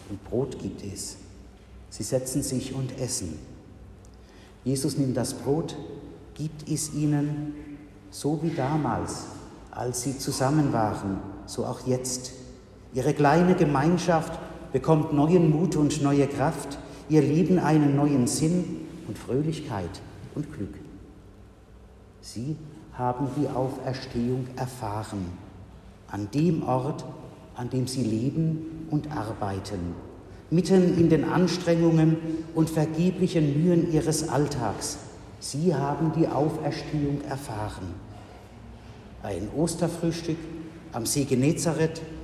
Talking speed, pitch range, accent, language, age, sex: 110 wpm, 110-155 Hz, German, German, 50-69, male